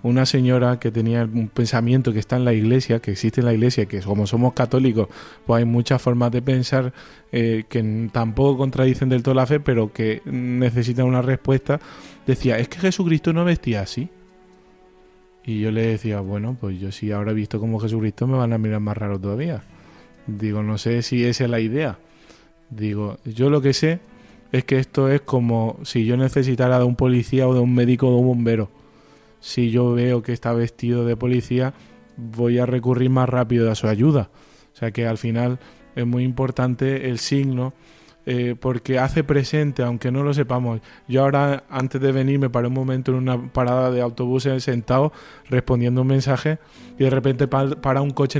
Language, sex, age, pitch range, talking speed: Spanish, male, 20-39, 120-140 Hz, 195 wpm